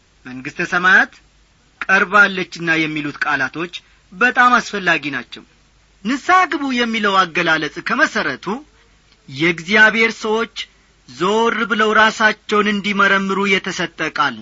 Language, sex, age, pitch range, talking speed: Amharic, male, 40-59, 175-240 Hz, 75 wpm